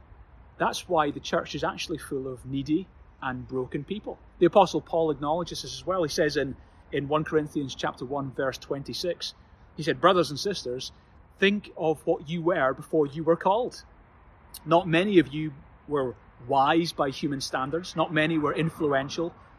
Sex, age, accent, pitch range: male, 30-49, British, 130-175 Hz